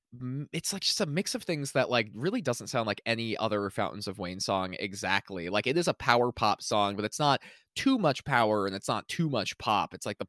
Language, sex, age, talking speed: English, male, 20-39, 245 wpm